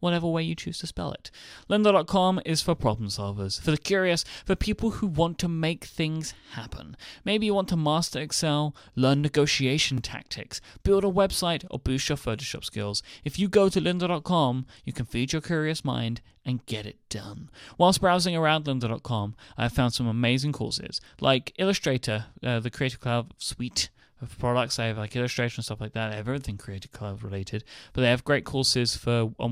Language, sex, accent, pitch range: English, male, British, 115-155 Hz